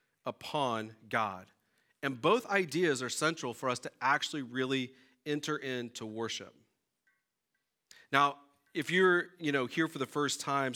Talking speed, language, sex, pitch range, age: 140 wpm, English, male, 115-140 Hz, 40-59